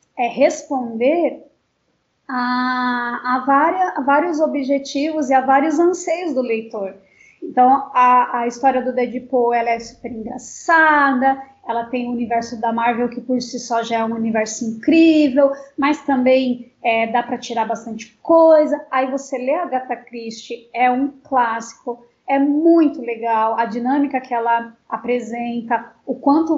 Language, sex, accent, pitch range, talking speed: Portuguese, female, Brazilian, 240-295 Hz, 140 wpm